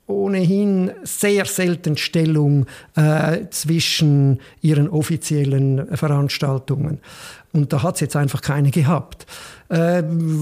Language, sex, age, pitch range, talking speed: German, male, 50-69, 150-185 Hz, 105 wpm